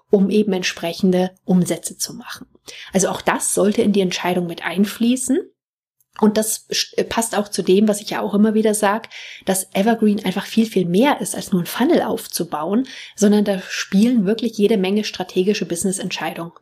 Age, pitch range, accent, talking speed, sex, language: 30-49, 185-225 Hz, German, 175 wpm, female, German